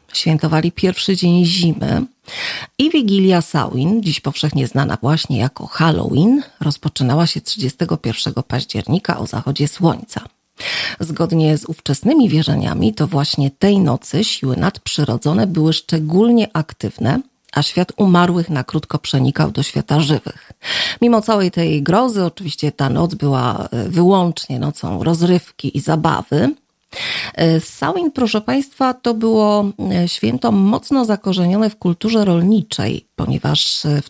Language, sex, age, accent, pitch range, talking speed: Polish, female, 40-59, native, 150-205 Hz, 120 wpm